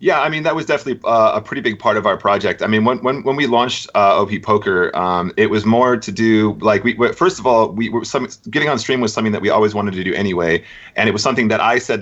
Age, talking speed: 30-49, 285 wpm